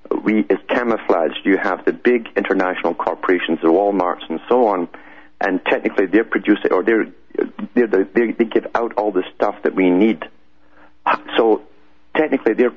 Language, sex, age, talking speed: English, male, 50-69, 165 wpm